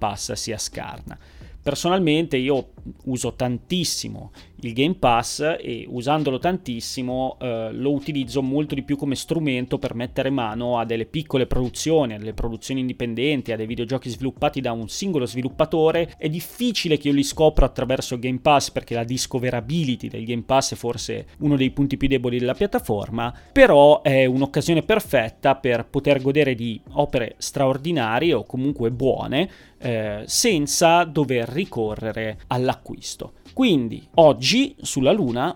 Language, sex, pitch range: Italian, male, 120-150 Hz